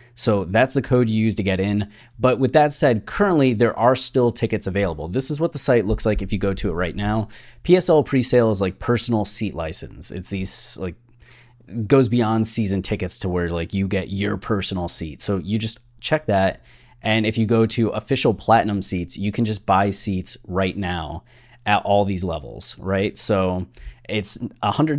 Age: 20-39